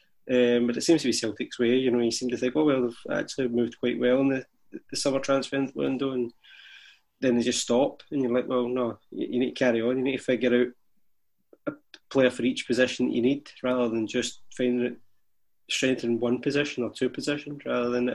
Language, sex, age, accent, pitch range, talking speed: English, male, 20-39, British, 115-125 Hz, 230 wpm